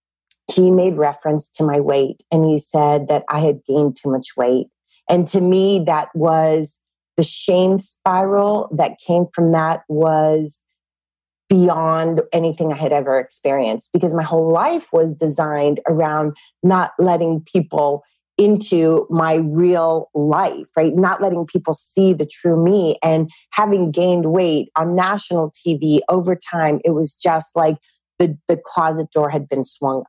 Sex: female